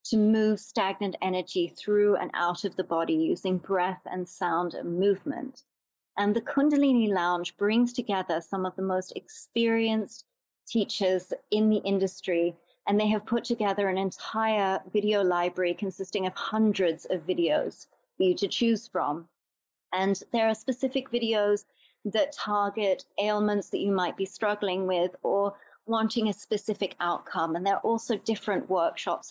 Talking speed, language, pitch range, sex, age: 155 wpm, English, 180-220 Hz, female, 30-49